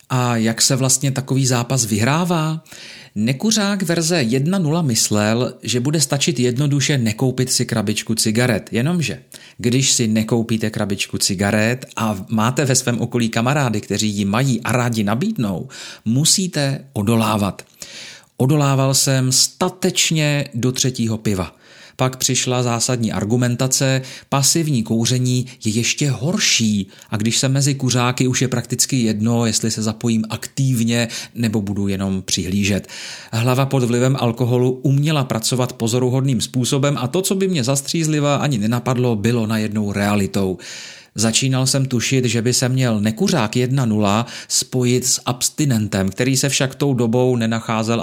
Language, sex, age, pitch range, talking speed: Czech, male, 40-59, 110-135 Hz, 135 wpm